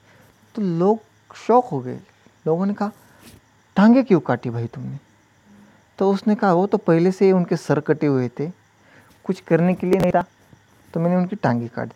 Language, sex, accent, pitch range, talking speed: Hindi, male, native, 115-175 Hz, 180 wpm